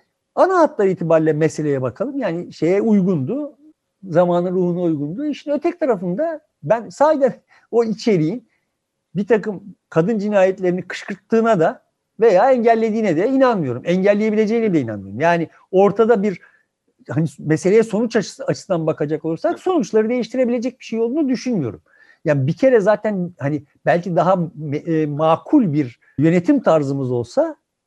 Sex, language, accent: male, Turkish, native